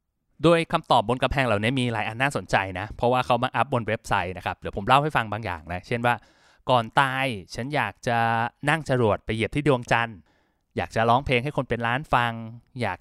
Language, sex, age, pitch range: Thai, male, 20-39, 115-145 Hz